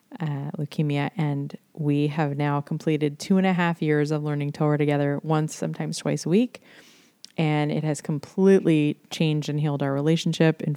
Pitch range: 150-170 Hz